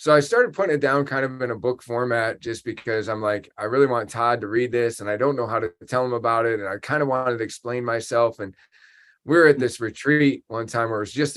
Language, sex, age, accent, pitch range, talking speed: English, male, 20-39, American, 110-140 Hz, 280 wpm